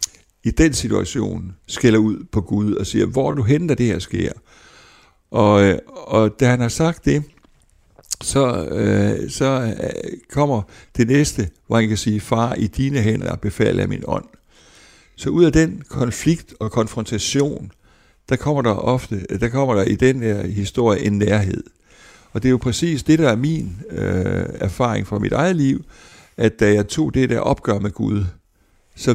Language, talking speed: Danish, 170 wpm